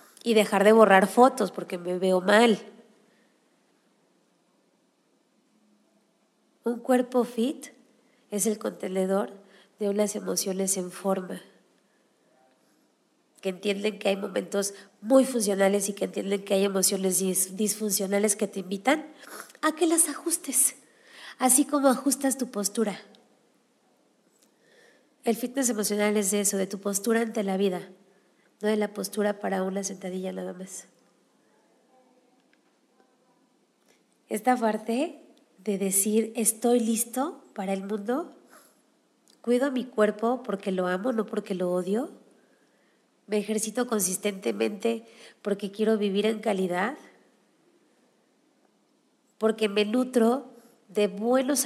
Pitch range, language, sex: 195-245 Hz, Spanish, female